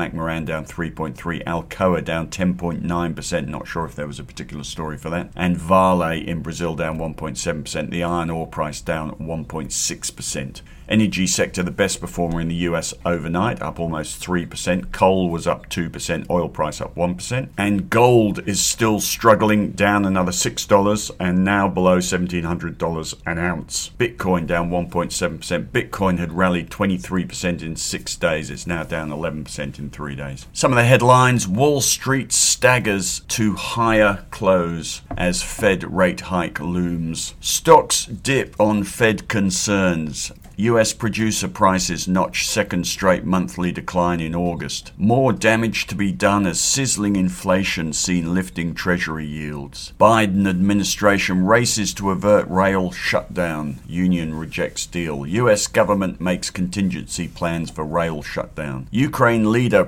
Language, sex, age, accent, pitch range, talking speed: English, male, 50-69, British, 85-100 Hz, 140 wpm